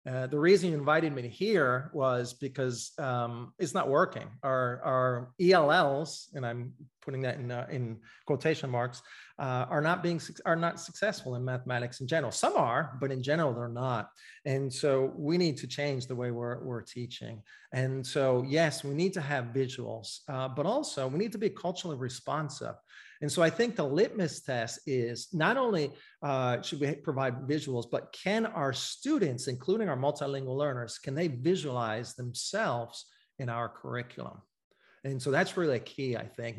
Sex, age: male, 40-59